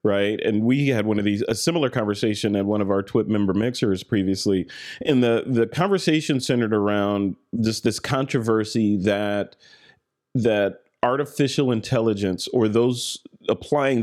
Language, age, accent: English, 40-59, American